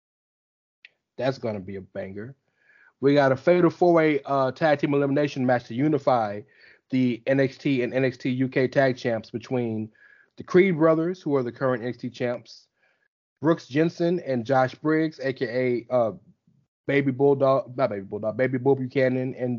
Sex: male